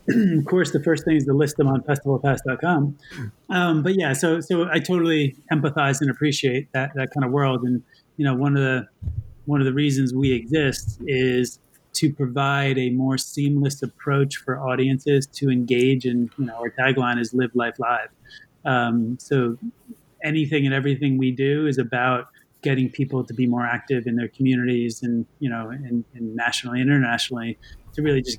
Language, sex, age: English, male, 30-49